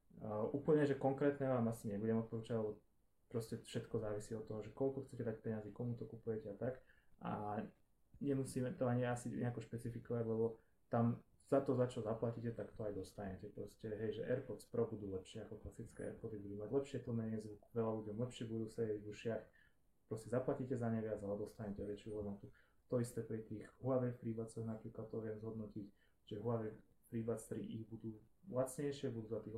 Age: 20-39